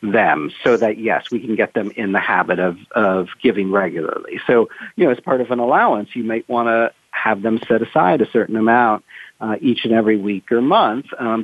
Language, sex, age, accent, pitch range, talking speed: English, male, 50-69, American, 110-130 Hz, 220 wpm